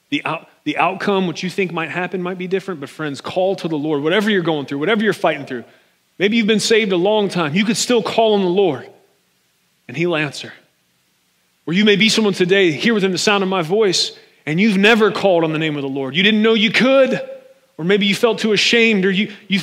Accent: American